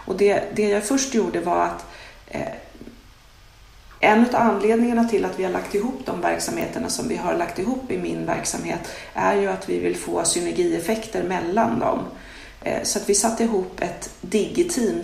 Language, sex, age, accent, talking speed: Swedish, female, 30-49, native, 180 wpm